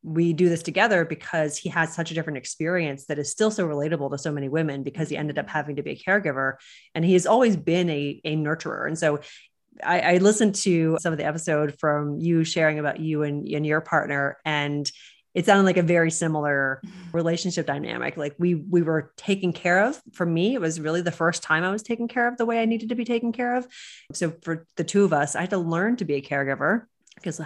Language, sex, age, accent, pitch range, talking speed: English, female, 30-49, American, 145-175 Hz, 240 wpm